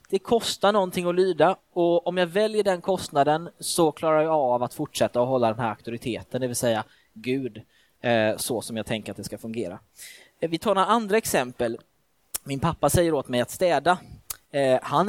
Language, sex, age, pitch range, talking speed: Swedish, male, 20-39, 135-190 Hz, 185 wpm